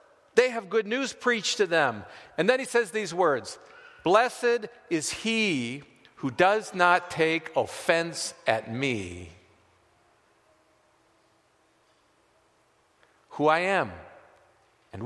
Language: English